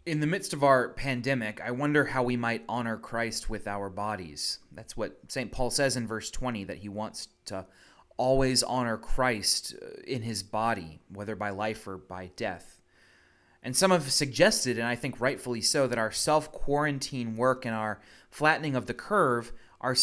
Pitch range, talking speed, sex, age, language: 110-140 Hz, 180 wpm, male, 30-49, English